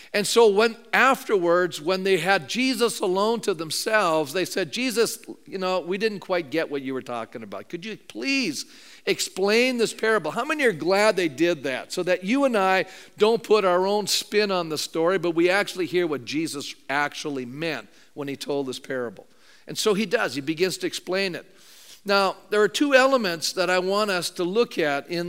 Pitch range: 165-225 Hz